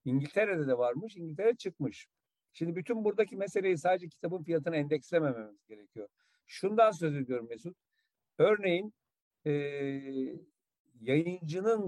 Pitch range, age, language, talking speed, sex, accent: 130-170 Hz, 50-69, Turkish, 105 wpm, male, native